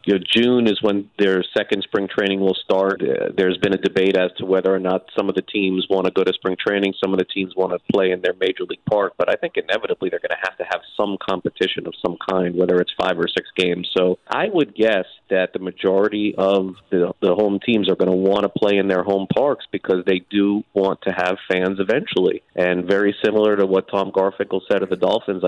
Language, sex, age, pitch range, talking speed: English, male, 30-49, 95-105 Hz, 245 wpm